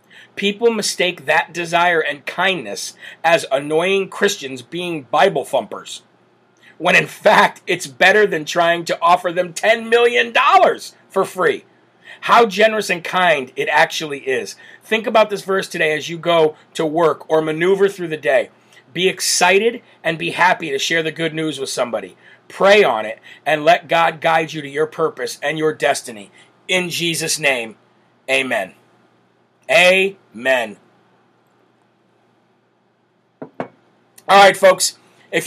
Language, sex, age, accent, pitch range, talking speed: English, male, 40-59, American, 150-175 Hz, 140 wpm